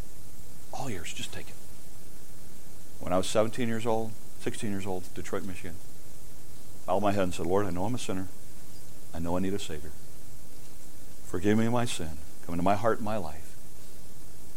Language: English